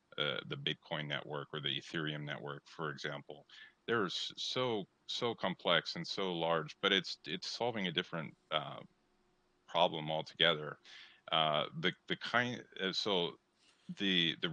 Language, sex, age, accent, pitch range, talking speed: English, male, 30-49, American, 75-85 Hz, 130 wpm